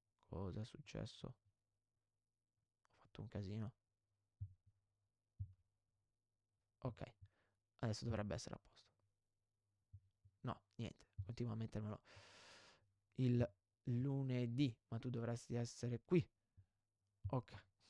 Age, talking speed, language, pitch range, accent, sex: 20-39, 85 wpm, Italian, 100-135 Hz, native, male